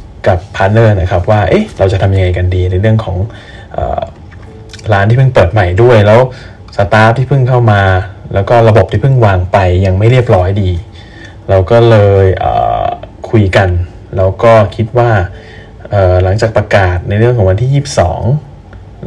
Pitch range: 95-110 Hz